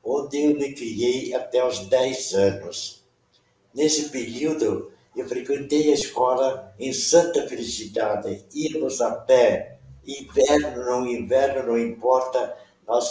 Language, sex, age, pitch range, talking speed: Portuguese, male, 60-79, 115-165 Hz, 120 wpm